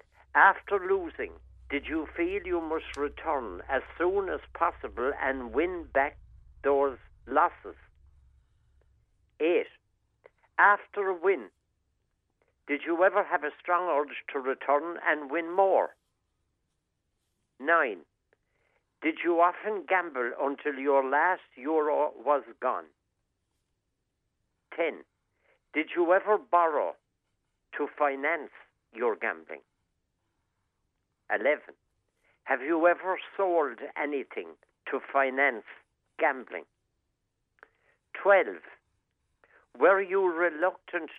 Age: 60-79